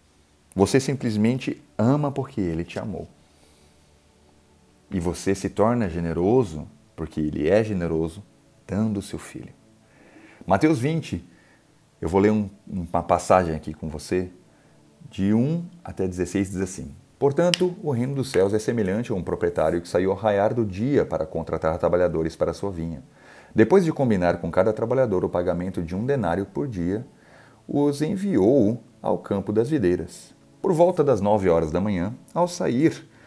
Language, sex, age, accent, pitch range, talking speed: Portuguese, male, 40-59, Brazilian, 80-120 Hz, 155 wpm